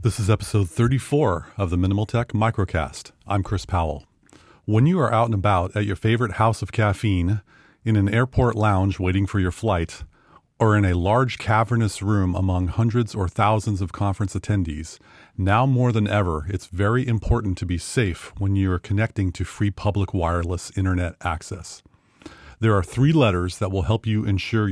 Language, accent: English, American